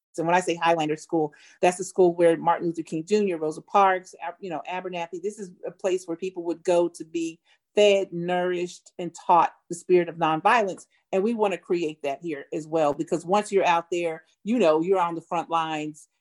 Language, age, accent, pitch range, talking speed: English, 40-59, American, 160-195 Hz, 215 wpm